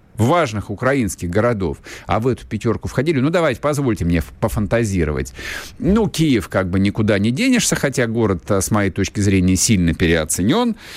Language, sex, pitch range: Russian, male, 95-155 Hz